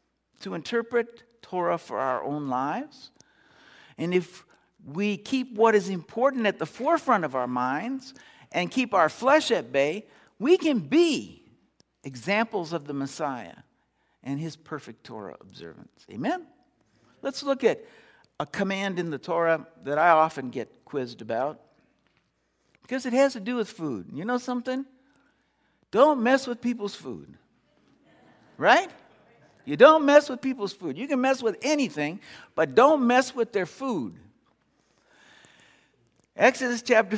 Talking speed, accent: 140 wpm, American